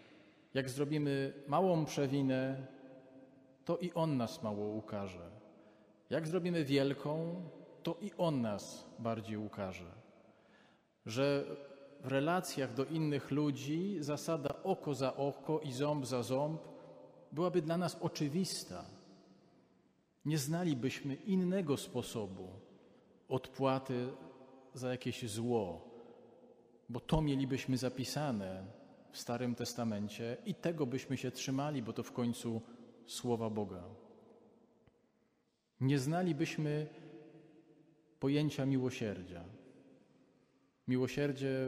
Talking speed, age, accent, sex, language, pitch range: 100 wpm, 40-59, native, male, Polish, 115-150 Hz